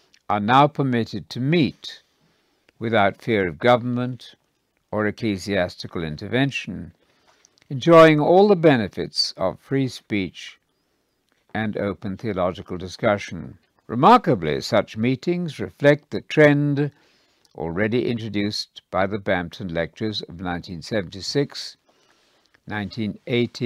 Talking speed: 95 wpm